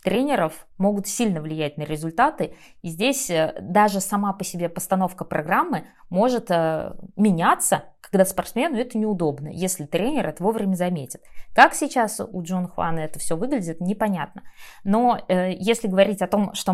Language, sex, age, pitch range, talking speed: Russian, female, 20-39, 175-240 Hz, 145 wpm